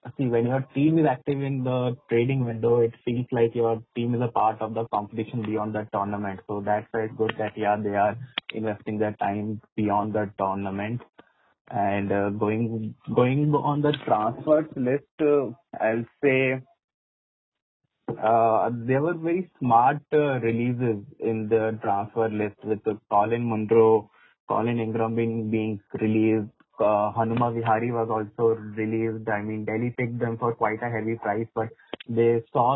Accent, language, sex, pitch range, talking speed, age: Indian, English, male, 110-130 Hz, 160 wpm, 20-39